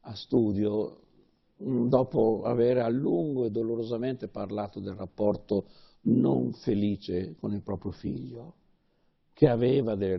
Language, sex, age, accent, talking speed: Italian, male, 60-79, native, 120 wpm